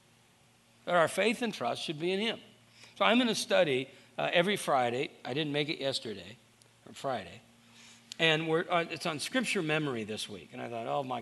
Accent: American